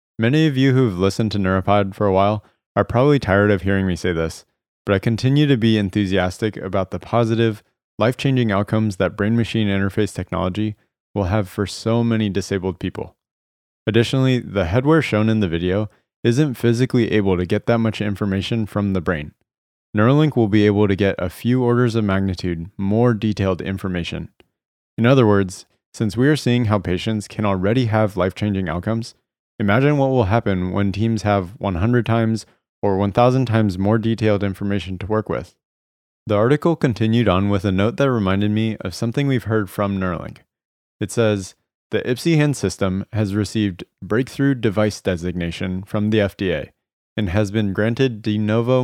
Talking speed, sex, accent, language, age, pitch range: 170 wpm, male, American, English, 20-39, 95-115 Hz